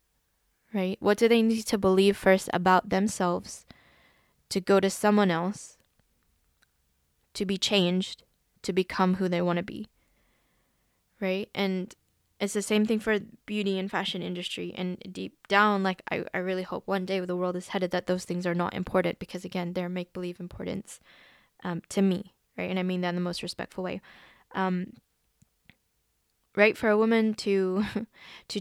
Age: 10-29